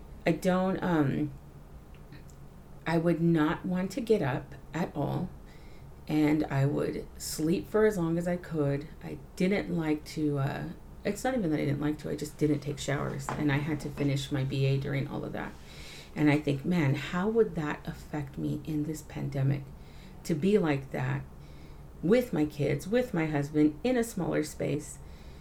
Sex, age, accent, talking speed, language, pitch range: female, 40-59, American, 180 wpm, English, 140-170 Hz